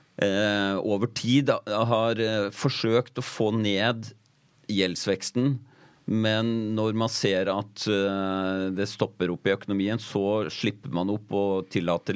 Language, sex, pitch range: English, male, 95-115 Hz